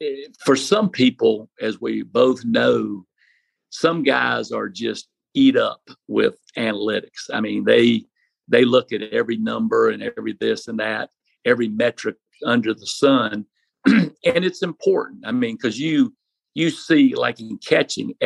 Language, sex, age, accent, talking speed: English, male, 50-69, American, 150 wpm